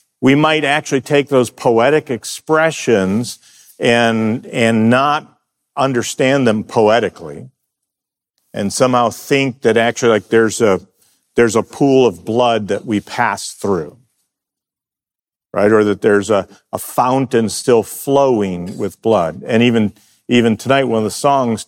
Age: 50-69